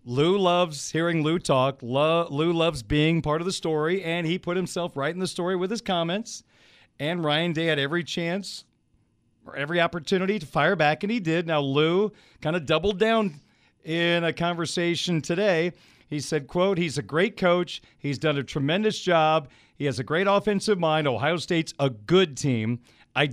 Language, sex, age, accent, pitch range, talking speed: English, male, 40-59, American, 140-175 Hz, 185 wpm